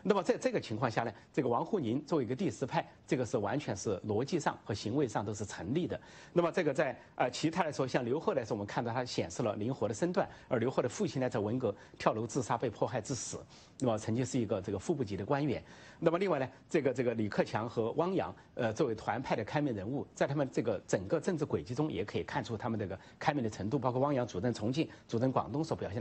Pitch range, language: 110-145 Hz, English